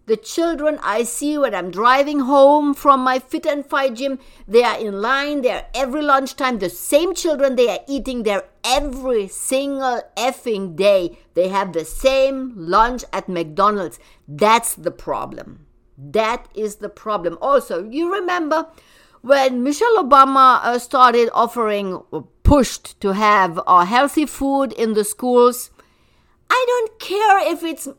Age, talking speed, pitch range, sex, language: 50-69, 150 wpm, 225-290 Hz, female, English